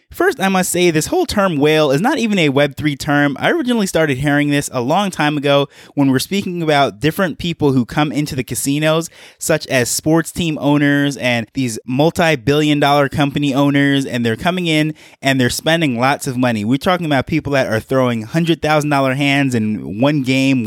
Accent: American